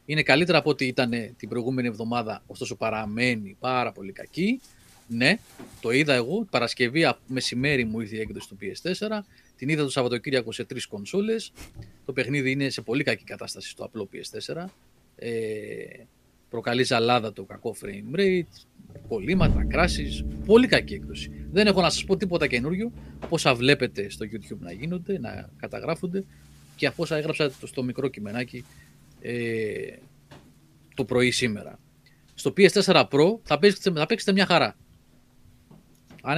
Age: 30-49